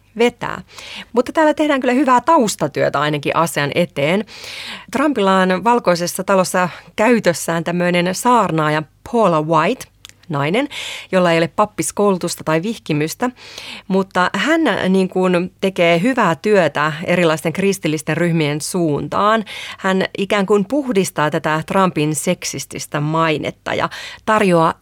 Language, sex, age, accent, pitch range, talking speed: Finnish, female, 30-49, native, 160-205 Hz, 115 wpm